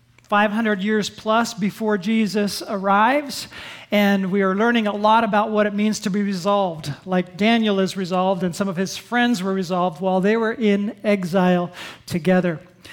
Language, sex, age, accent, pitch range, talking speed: English, male, 40-59, American, 195-235 Hz, 165 wpm